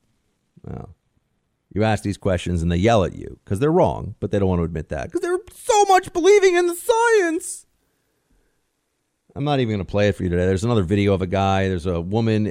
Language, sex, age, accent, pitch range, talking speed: English, male, 40-59, American, 95-145 Hz, 225 wpm